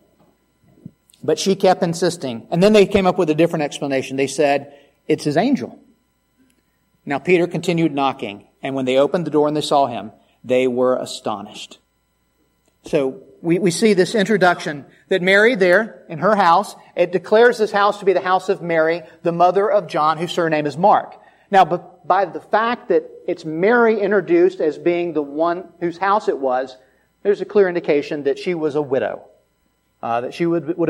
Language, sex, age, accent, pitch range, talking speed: English, male, 40-59, American, 140-190 Hz, 185 wpm